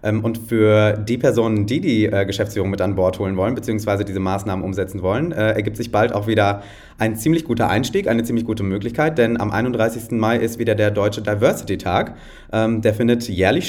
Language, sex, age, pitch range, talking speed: German, male, 30-49, 105-120 Hz, 190 wpm